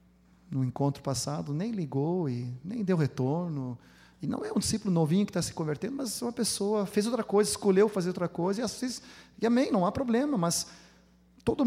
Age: 40-59